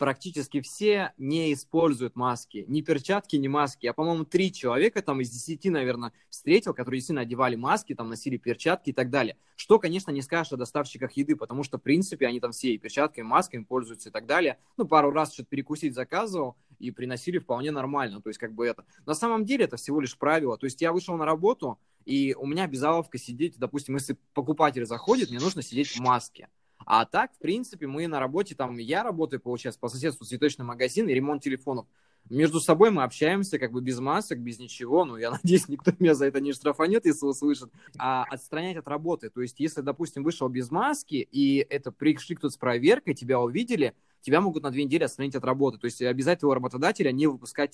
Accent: native